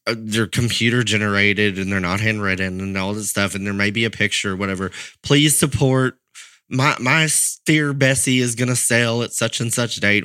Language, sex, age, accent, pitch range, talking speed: English, male, 30-49, American, 105-130 Hz, 205 wpm